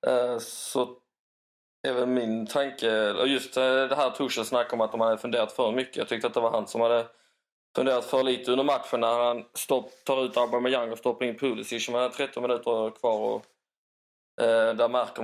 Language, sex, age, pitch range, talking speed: Swedish, male, 20-39, 110-130 Hz, 195 wpm